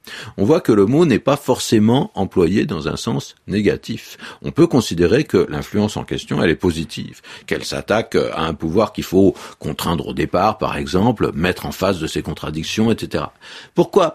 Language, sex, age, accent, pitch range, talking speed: French, male, 50-69, French, 85-120 Hz, 180 wpm